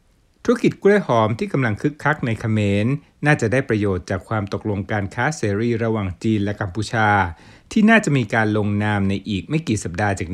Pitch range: 100-135 Hz